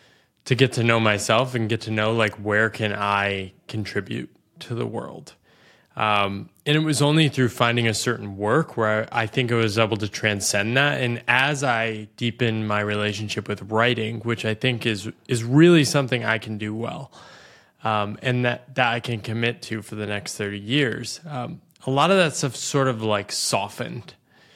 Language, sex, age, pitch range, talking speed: English, male, 20-39, 110-140 Hz, 195 wpm